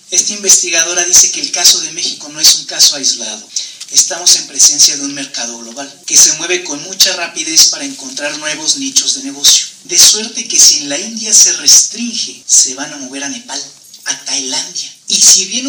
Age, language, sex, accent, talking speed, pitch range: 40-59, English, male, Mexican, 200 wpm, 145-245 Hz